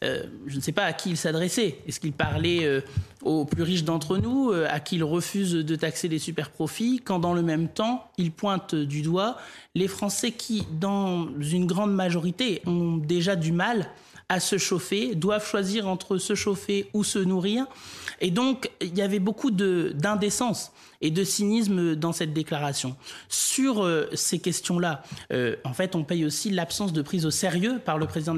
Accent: French